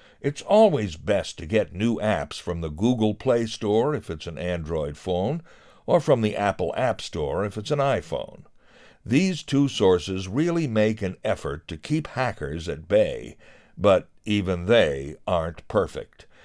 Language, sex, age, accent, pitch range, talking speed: English, male, 60-79, American, 90-150 Hz, 160 wpm